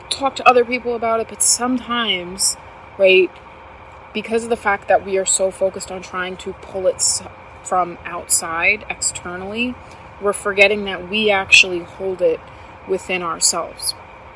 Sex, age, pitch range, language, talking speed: female, 20-39, 180-210 Hz, English, 145 wpm